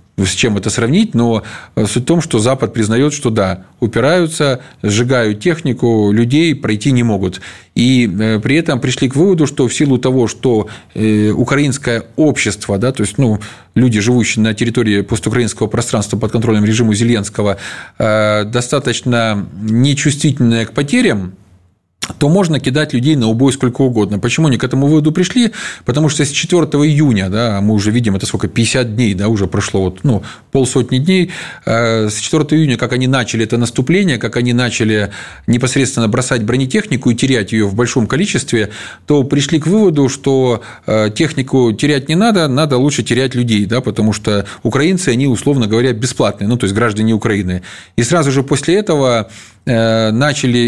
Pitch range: 110-140 Hz